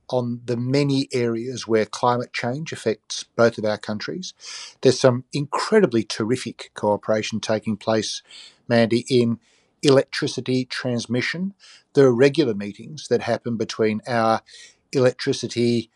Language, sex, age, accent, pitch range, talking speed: English, male, 50-69, Australian, 115-130 Hz, 120 wpm